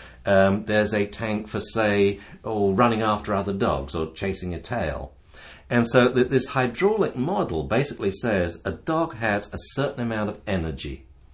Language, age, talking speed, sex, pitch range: English, 60-79, 160 wpm, male, 85-115 Hz